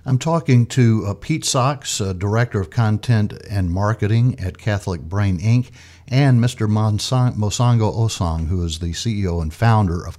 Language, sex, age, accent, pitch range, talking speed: English, male, 50-69, American, 85-110 Hz, 160 wpm